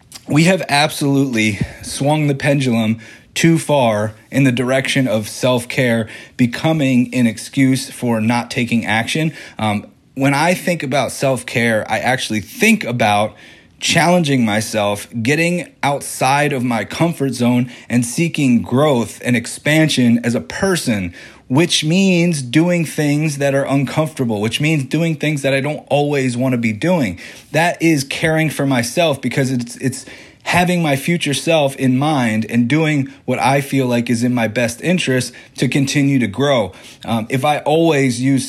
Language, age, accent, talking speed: English, 30-49, American, 155 wpm